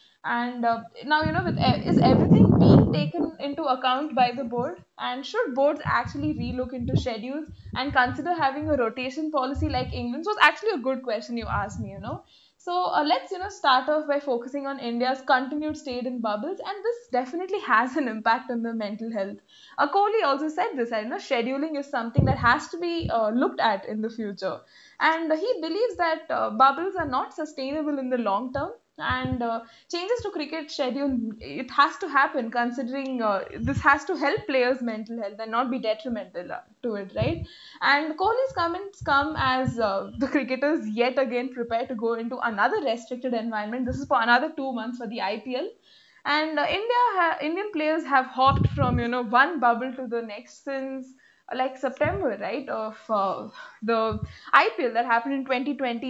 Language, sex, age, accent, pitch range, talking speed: English, female, 10-29, Indian, 235-300 Hz, 190 wpm